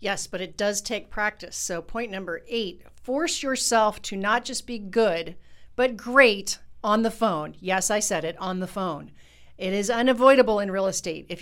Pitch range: 190-255 Hz